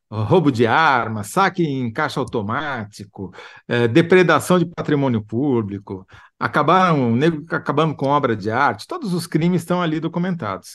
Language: Portuguese